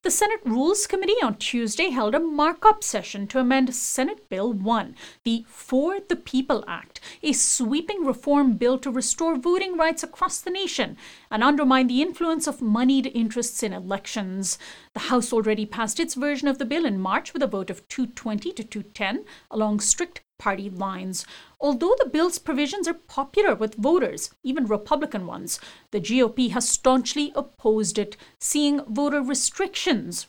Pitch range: 215-300 Hz